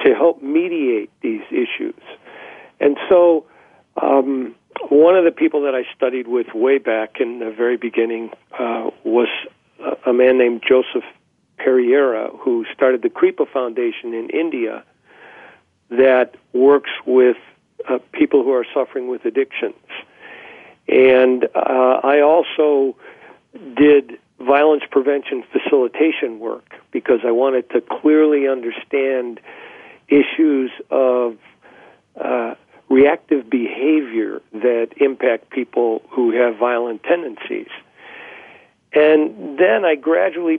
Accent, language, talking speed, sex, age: American, English, 115 wpm, male, 50-69